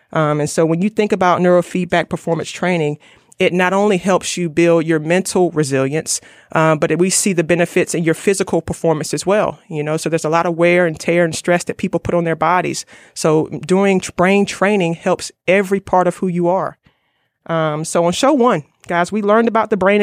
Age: 30-49